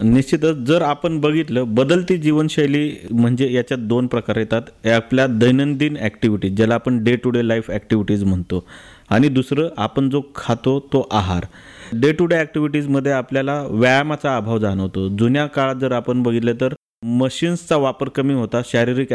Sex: male